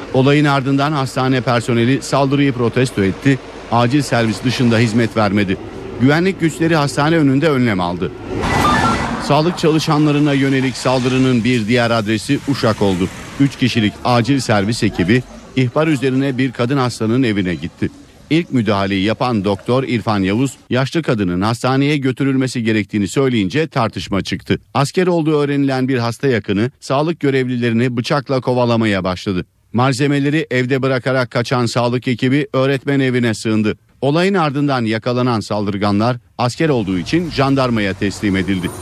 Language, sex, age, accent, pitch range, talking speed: Turkish, male, 50-69, native, 110-135 Hz, 130 wpm